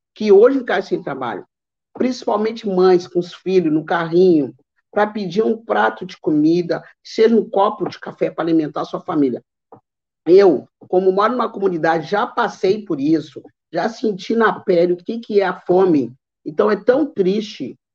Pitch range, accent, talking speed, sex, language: 180-220 Hz, Brazilian, 175 wpm, male, Portuguese